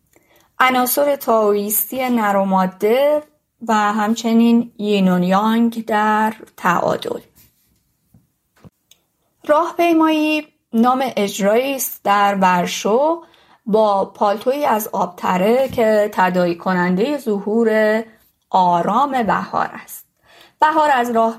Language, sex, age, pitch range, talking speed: Persian, female, 30-49, 200-250 Hz, 80 wpm